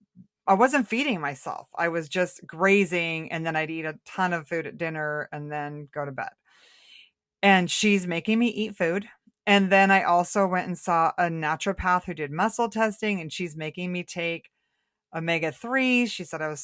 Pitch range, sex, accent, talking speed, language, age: 165-205 Hz, female, American, 190 wpm, English, 30-49